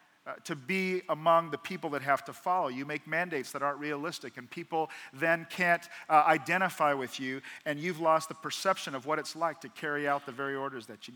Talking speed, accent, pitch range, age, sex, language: 220 wpm, American, 140-180 Hz, 40-59, male, English